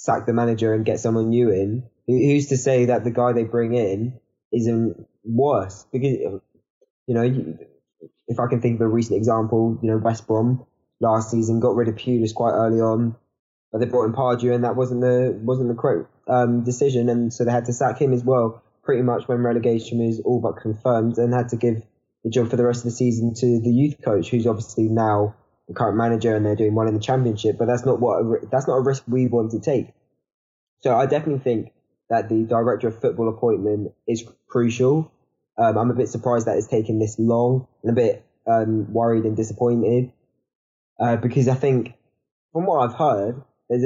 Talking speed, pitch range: 210 wpm, 110-125 Hz